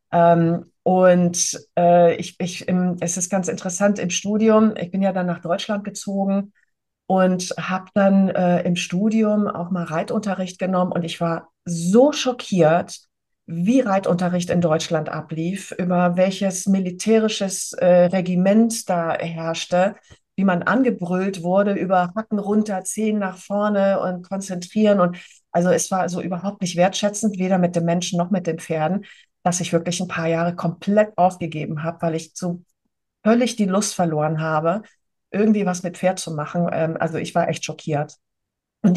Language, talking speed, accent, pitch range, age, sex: German, 155 wpm, German, 170-200 Hz, 40-59, female